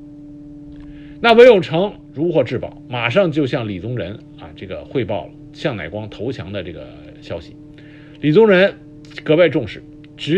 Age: 50-69